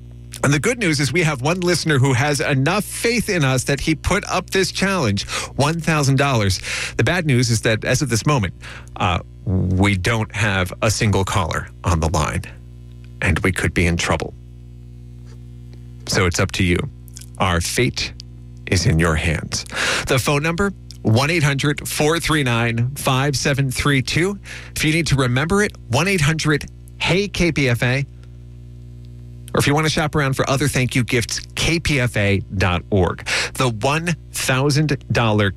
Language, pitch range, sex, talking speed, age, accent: English, 90-145 Hz, male, 145 wpm, 40-59, American